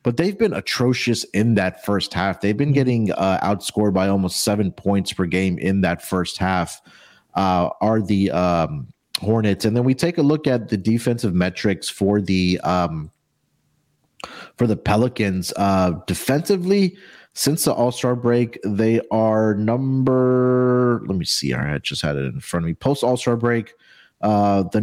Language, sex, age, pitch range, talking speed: English, male, 30-49, 95-120 Hz, 170 wpm